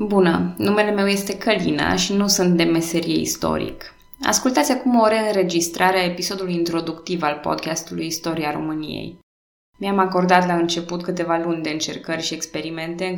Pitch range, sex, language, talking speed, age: 165-195 Hz, female, Romanian, 150 wpm, 20-39